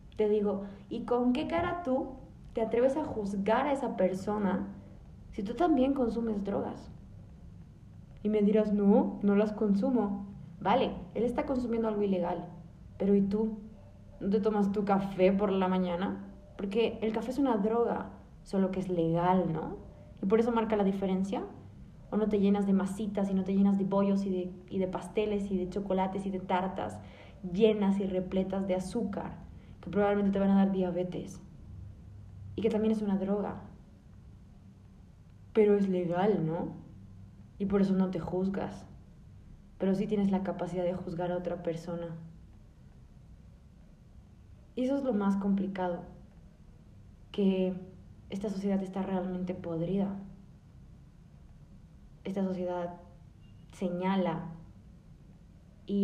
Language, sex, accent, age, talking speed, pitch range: Spanish, female, Mexican, 20-39, 145 wpm, 175-210 Hz